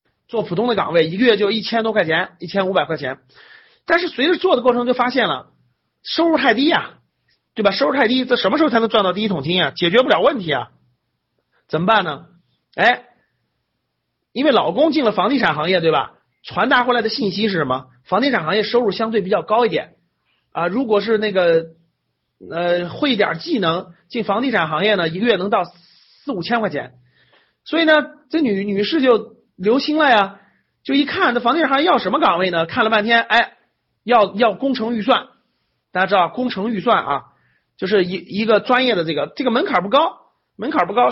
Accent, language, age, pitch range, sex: native, Chinese, 30-49, 180-240 Hz, male